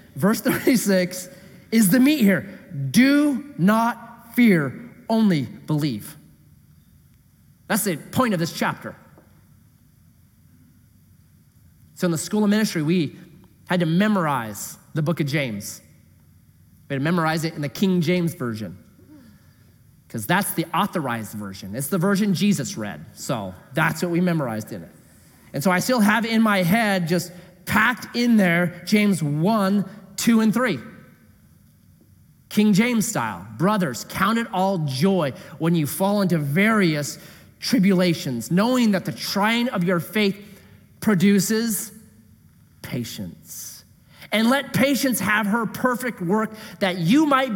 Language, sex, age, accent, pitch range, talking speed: English, male, 30-49, American, 150-215 Hz, 135 wpm